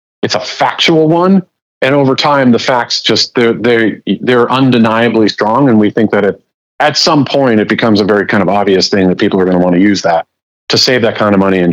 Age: 40-59